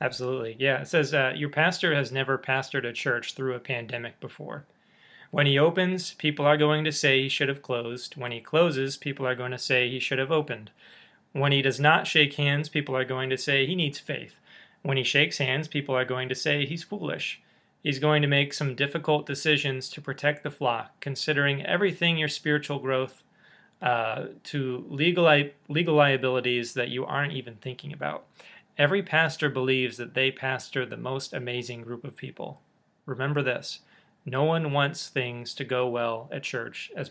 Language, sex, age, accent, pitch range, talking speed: English, male, 30-49, American, 125-150 Hz, 190 wpm